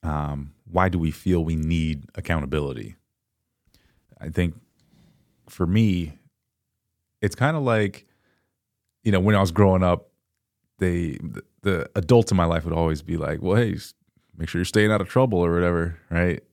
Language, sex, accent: English, male, American